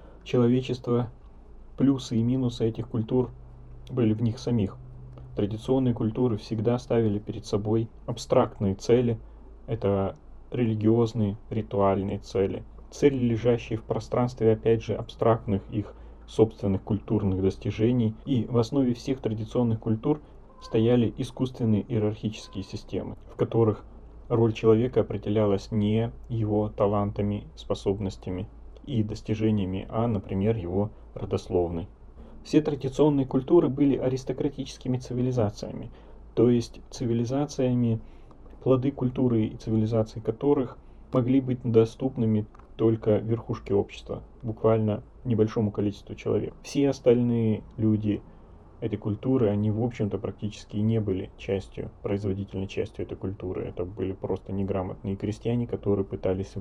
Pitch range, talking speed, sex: 105-125 Hz, 110 wpm, male